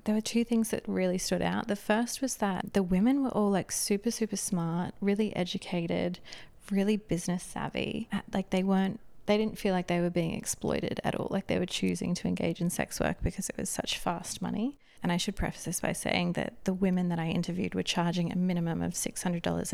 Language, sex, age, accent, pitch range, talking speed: English, female, 20-39, Australian, 180-210 Hz, 220 wpm